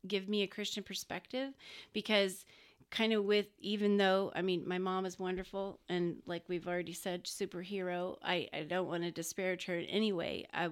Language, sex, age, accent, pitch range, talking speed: English, female, 30-49, American, 175-205 Hz, 190 wpm